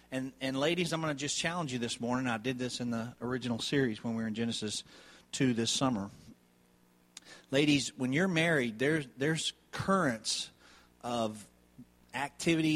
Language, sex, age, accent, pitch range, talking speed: English, male, 40-59, American, 120-170 Hz, 165 wpm